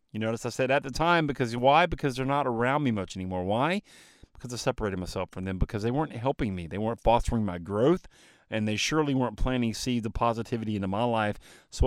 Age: 30-49